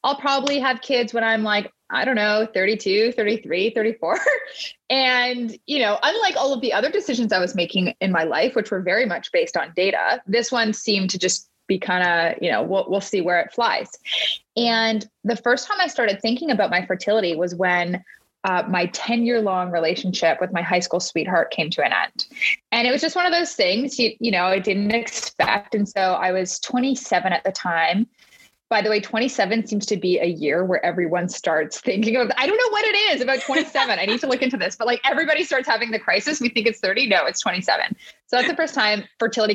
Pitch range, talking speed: 185-245 Hz, 220 wpm